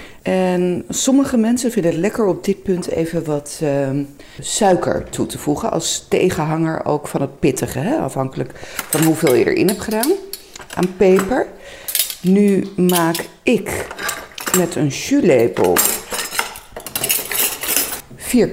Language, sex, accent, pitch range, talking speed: Dutch, female, Dutch, 155-220 Hz, 125 wpm